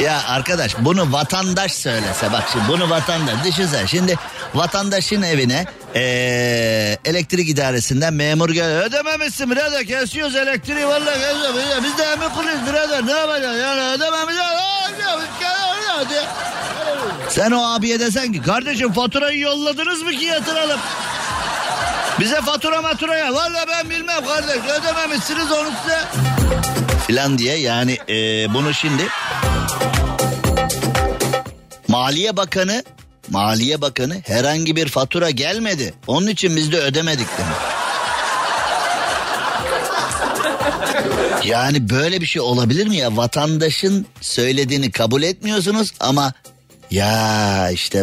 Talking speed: 110 wpm